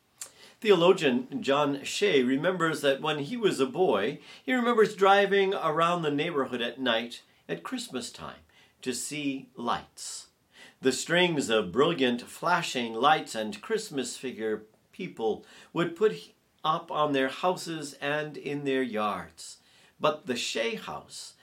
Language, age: English, 50-69